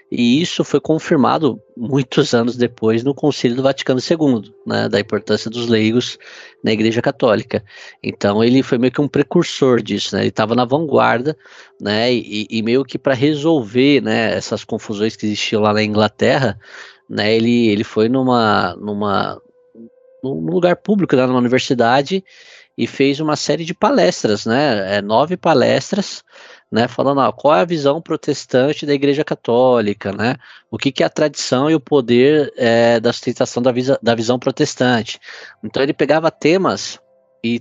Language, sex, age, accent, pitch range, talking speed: Portuguese, male, 20-39, Brazilian, 115-160 Hz, 155 wpm